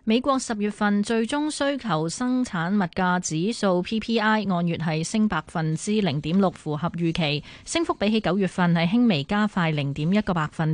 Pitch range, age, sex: 170-225 Hz, 20-39, female